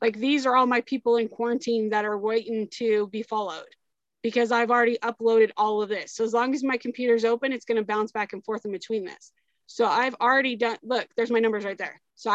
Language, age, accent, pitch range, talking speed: English, 20-39, American, 220-255 Hz, 240 wpm